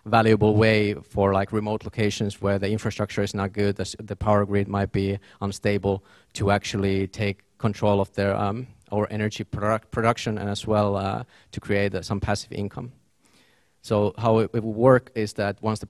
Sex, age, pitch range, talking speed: male, 30-49, 100-110 Hz, 195 wpm